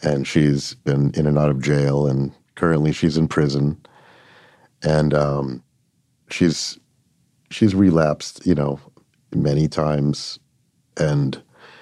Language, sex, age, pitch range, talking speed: English, male, 40-59, 70-80 Hz, 115 wpm